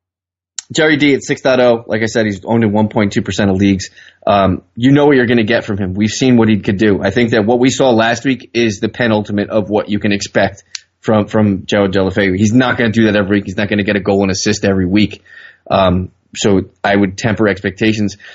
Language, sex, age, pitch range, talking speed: English, male, 20-39, 105-125 Hz, 245 wpm